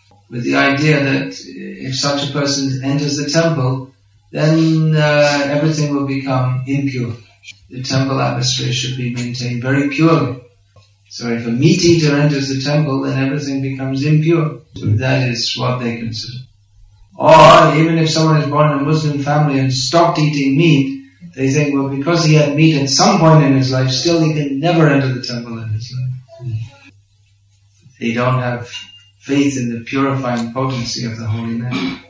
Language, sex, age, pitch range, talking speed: English, male, 30-49, 115-150 Hz, 170 wpm